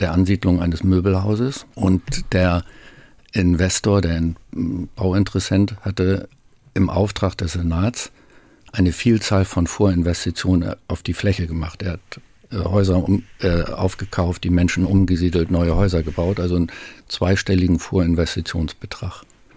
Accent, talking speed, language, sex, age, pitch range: German, 115 wpm, German, male, 50-69, 90-105 Hz